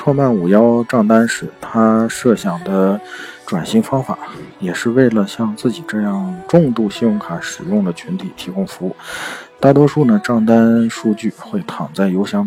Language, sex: Chinese, male